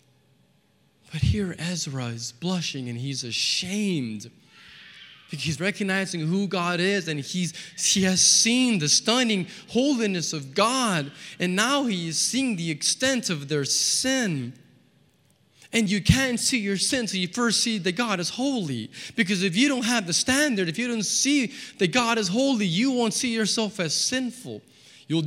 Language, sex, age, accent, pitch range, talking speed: English, male, 20-39, American, 145-220 Hz, 165 wpm